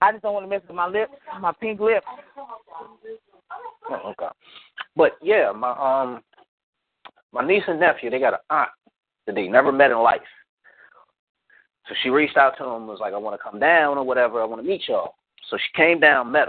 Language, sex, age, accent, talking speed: English, male, 30-49, American, 210 wpm